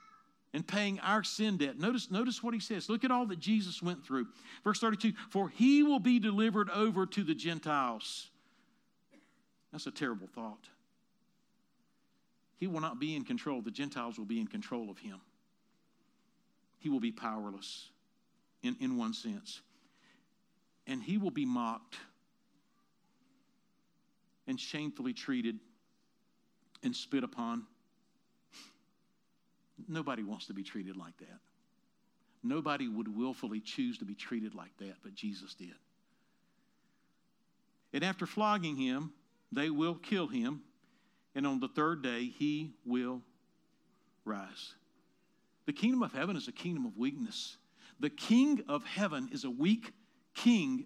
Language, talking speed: English, 140 wpm